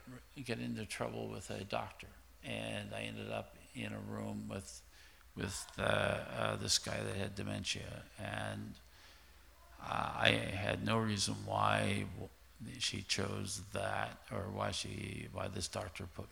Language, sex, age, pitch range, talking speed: English, male, 50-69, 95-110 Hz, 145 wpm